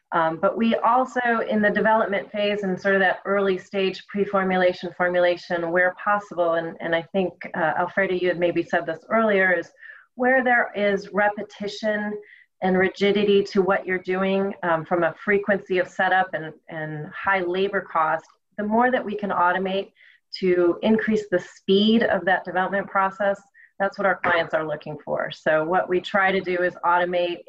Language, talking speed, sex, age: English, 180 wpm, female, 30-49